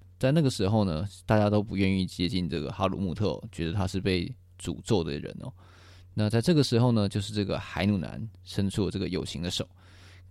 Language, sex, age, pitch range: Chinese, male, 20-39, 90-105 Hz